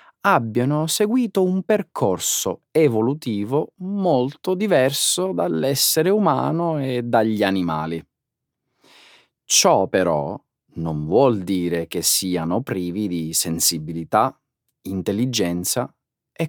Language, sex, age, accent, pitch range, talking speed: Italian, male, 40-59, native, 85-145 Hz, 85 wpm